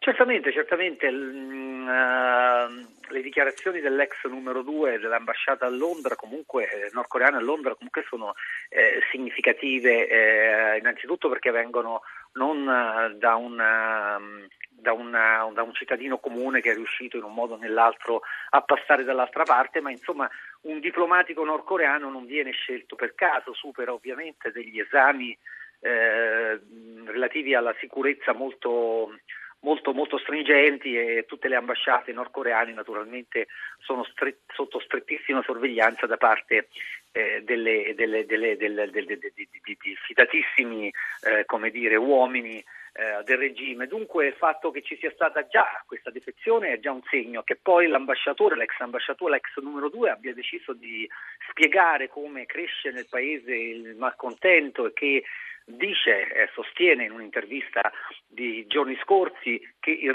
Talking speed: 130 wpm